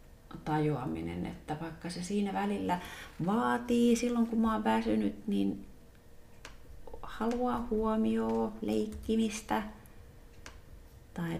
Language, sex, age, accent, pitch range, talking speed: Finnish, female, 30-49, native, 140-200 Hz, 90 wpm